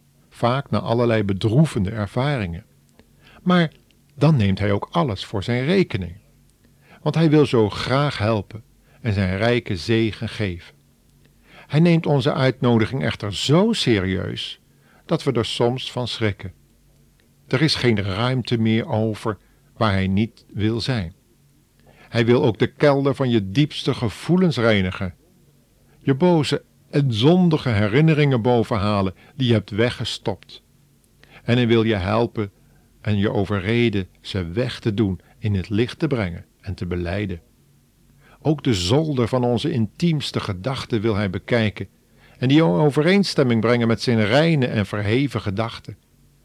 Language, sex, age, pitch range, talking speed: Dutch, male, 50-69, 105-140 Hz, 140 wpm